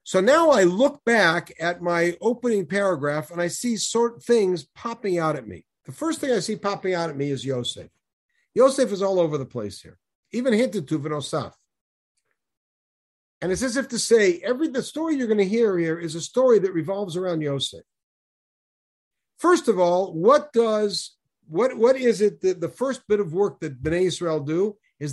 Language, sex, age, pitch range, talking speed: English, male, 50-69, 155-235 Hz, 195 wpm